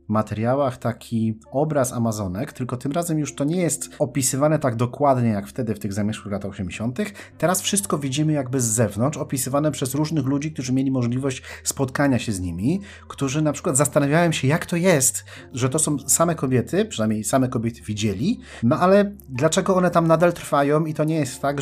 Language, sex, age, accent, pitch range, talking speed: Polish, male, 30-49, native, 100-140 Hz, 185 wpm